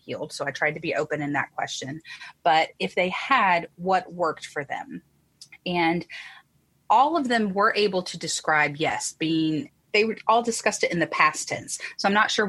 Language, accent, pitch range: English, American, 145-180 Hz